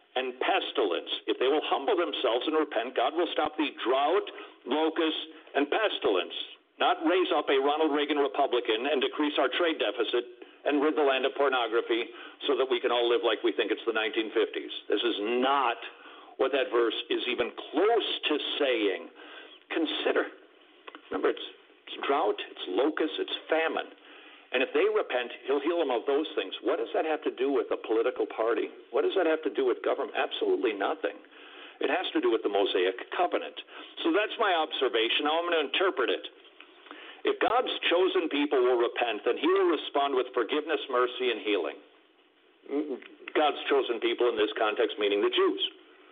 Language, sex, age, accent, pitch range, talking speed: English, male, 60-79, American, 355-415 Hz, 180 wpm